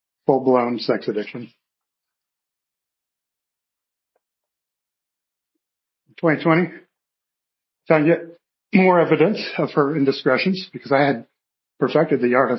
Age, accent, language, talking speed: 40-59, American, English, 80 wpm